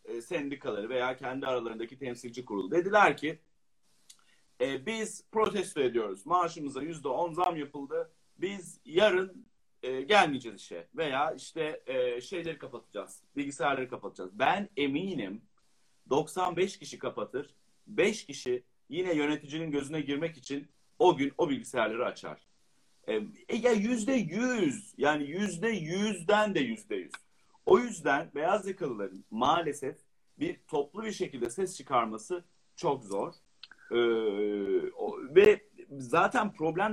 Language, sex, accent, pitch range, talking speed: Turkish, male, native, 130-205 Hz, 110 wpm